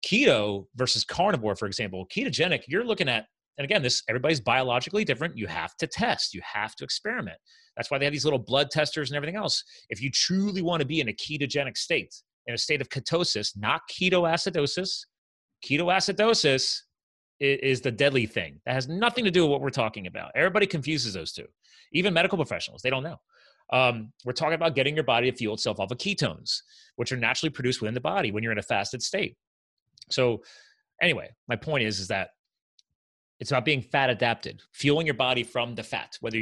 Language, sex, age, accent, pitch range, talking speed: English, male, 30-49, American, 110-155 Hz, 200 wpm